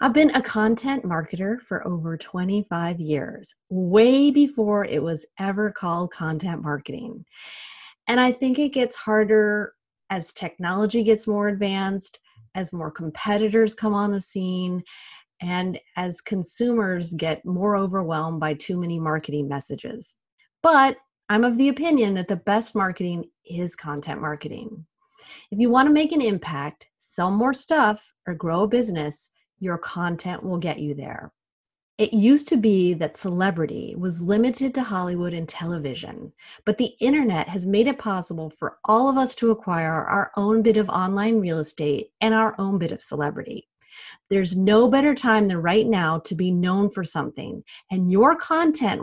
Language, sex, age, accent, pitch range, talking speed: English, female, 30-49, American, 170-230 Hz, 160 wpm